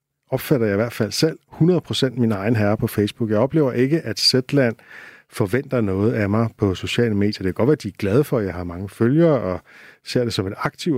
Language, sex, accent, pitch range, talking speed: Danish, male, native, 100-130 Hz, 240 wpm